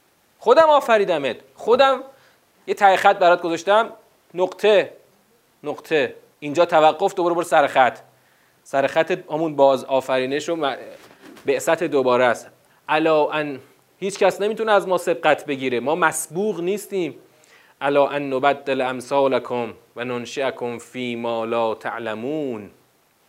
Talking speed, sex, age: 120 wpm, male, 30-49